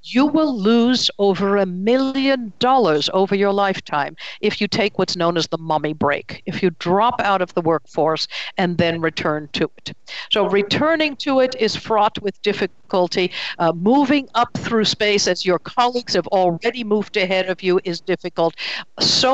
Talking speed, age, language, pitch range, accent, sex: 175 wpm, 60-79, English, 170-220 Hz, American, female